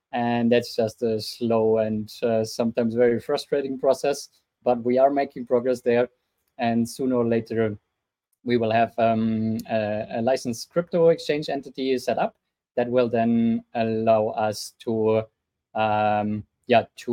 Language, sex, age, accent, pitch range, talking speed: English, male, 20-39, German, 110-140 Hz, 145 wpm